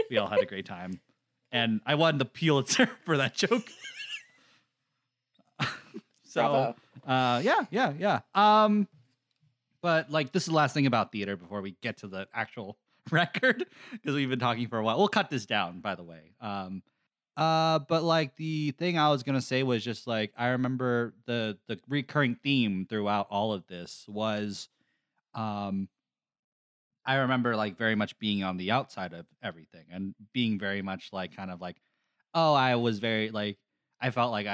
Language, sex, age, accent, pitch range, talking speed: English, male, 30-49, American, 105-140 Hz, 180 wpm